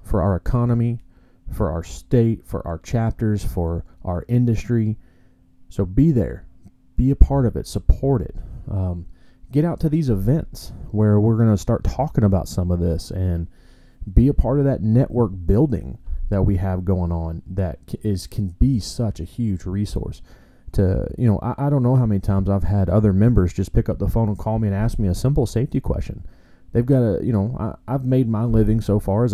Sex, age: male, 30-49